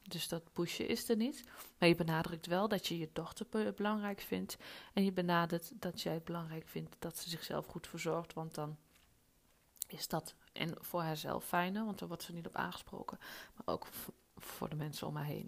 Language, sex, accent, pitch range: Dutch, female, Dutch, 160-195 Hz